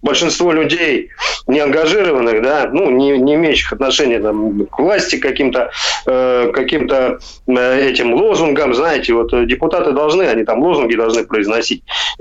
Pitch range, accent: 130-200 Hz, native